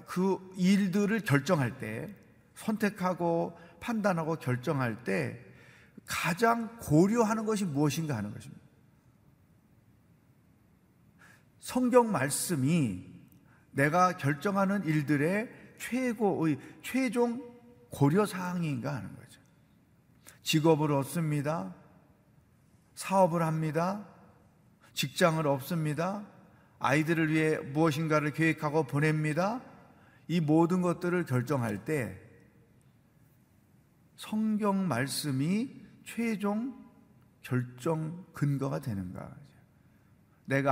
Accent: native